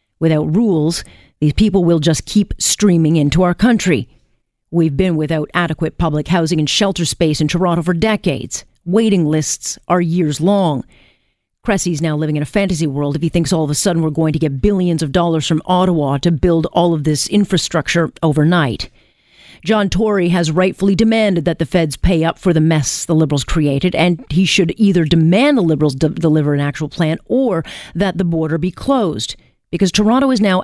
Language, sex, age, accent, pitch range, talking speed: English, female, 40-59, American, 155-195 Hz, 190 wpm